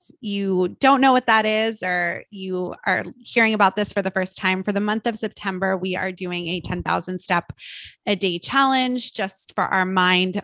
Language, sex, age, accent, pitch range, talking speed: English, female, 20-39, American, 180-220 Hz, 195 wpm